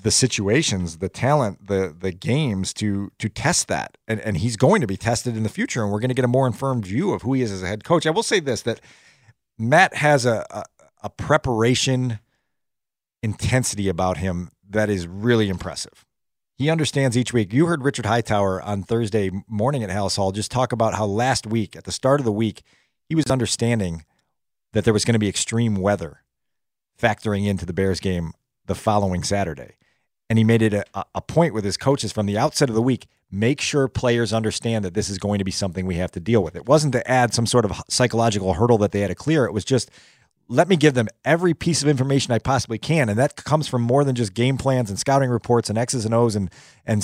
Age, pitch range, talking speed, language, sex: 40-59, 105-130 Hz, 230 wpm, English, male